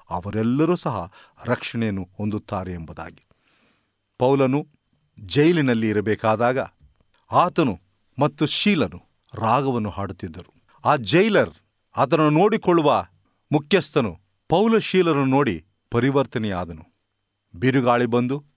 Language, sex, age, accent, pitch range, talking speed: Kannada, male, 40-59, native, 100-150 Hz, 75 wpm